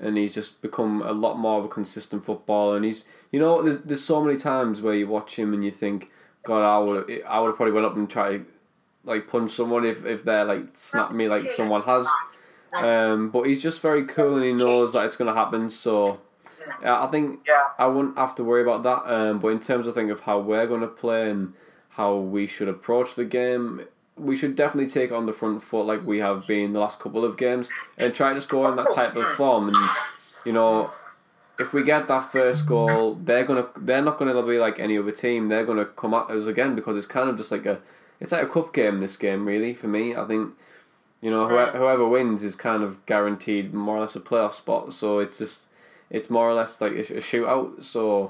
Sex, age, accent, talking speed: male, 20-39, British, 230 wpm